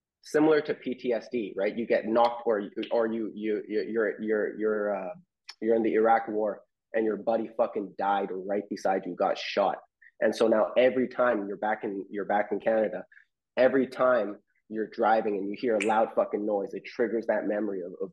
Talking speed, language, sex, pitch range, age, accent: 200 wpm, English, male, 105-125 Hz, 30-49, American